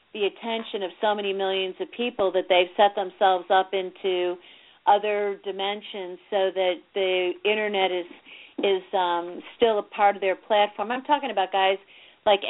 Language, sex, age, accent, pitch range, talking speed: English, female, 40-59, American, 190-220 Hz, 165 wpm